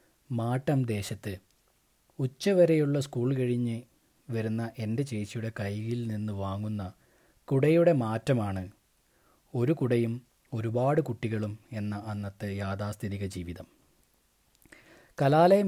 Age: 20-39